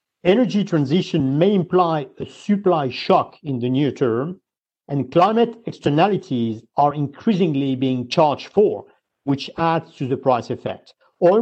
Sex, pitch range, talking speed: male, 130-175 Hz, 135 wpm